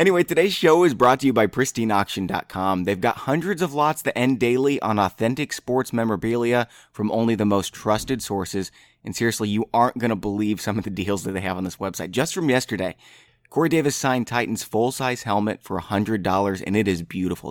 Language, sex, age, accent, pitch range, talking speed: English, male, 30-49, American, 100-125 Hz, 200 wpm